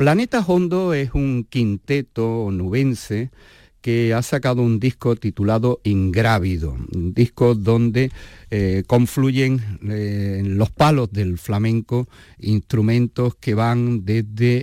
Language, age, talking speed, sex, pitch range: Spanish, 50-69, 115 wpm, male, 100-125 Hz